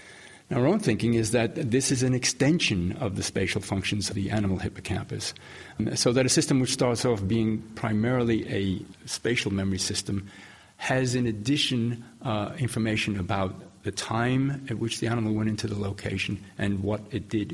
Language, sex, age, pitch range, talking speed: English, male, 50-69, 95-115 Hz, 170 wpm